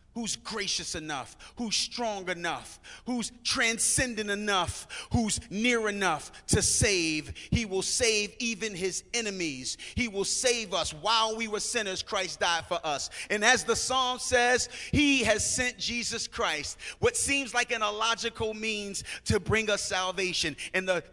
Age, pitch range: 30-49, 190-235 Hz